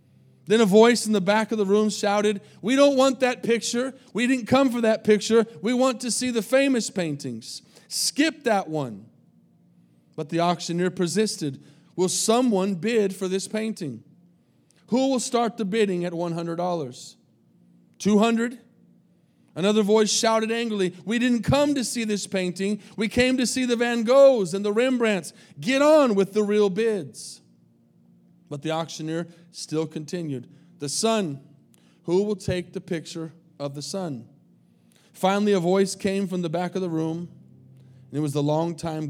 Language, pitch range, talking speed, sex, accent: English, 145-220 Hz, 165 wpm, male, American